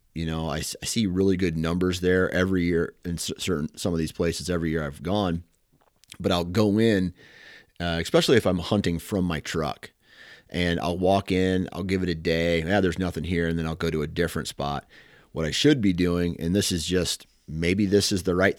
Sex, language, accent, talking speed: male, English, American, 220 wpm